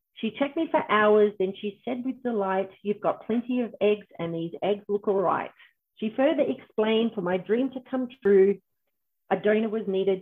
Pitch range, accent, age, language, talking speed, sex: 195-245 Hz, Australian, 40-59, English, 200 wpm, female